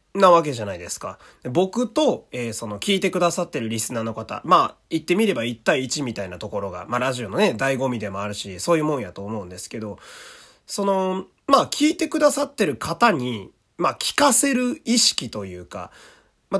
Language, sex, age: Japanese, male, 30-49